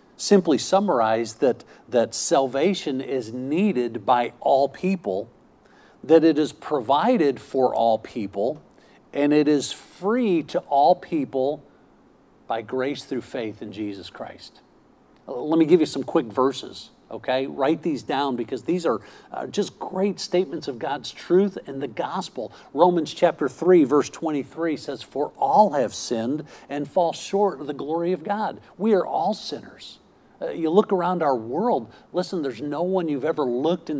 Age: 50-69